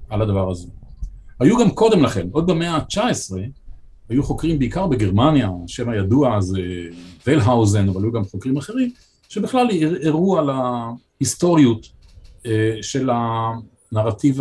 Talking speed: 125 wpm